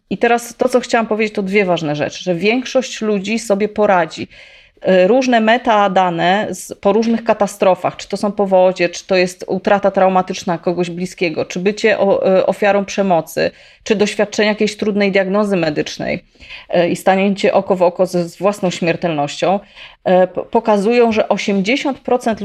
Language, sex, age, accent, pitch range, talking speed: Polish, female, 30-49, native, 180-215 Hz, 145 wpm